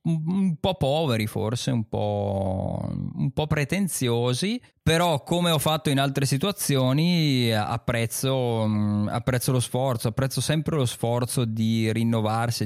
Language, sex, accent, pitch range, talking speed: Italian, male, native, 105-135 Hz, 125 wpm